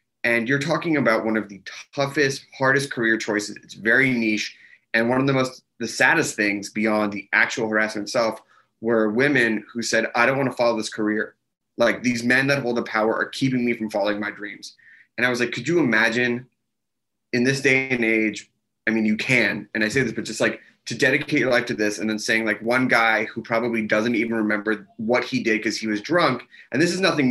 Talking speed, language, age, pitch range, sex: 225 wpm, English, 20-39, 110-135 Hz, male